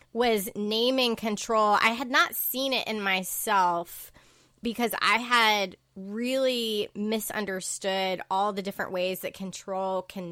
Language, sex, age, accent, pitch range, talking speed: English, female, 20-39, American, 195-235 Hz, 130 wpm